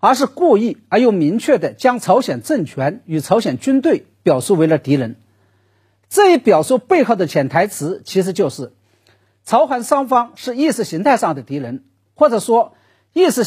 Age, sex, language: 50-69, male, Chinese